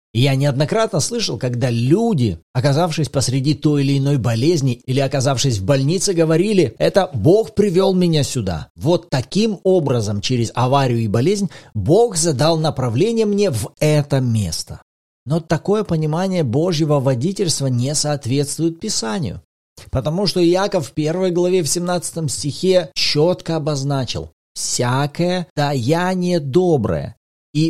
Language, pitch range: Russian, 125-180 Hz